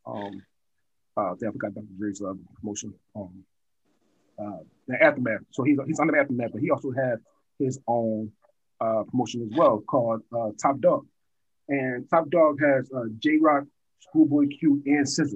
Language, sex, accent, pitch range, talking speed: English, male, American, 125-170 Hz, 160 wpm